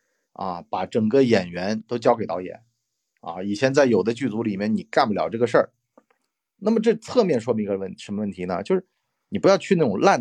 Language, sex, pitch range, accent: Chinese, male, 115-185 Hz, native